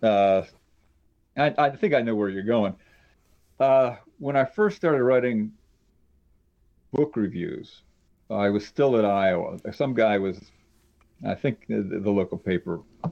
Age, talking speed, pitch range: 50-69, 140 wpm, 95-115 Hz